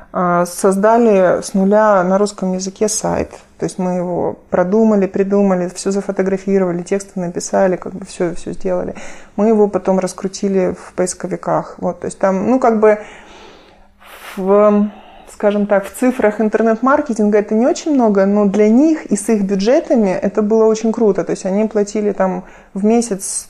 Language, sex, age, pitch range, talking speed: Ukrainian, male, 30-49, 185-215 Hz, 155 wpm